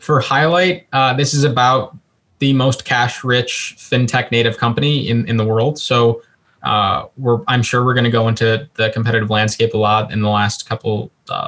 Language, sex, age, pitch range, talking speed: English, male, 20-39, 110-125 Hz, 185 wpm